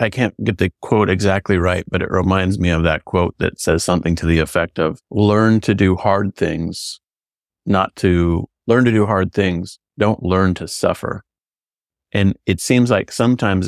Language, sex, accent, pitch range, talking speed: English, male, American, 90-110 Hz, 185 wpm